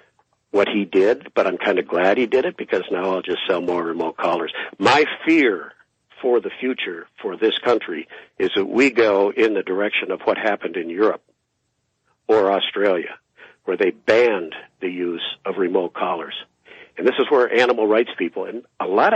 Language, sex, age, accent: English, male, 50-69, American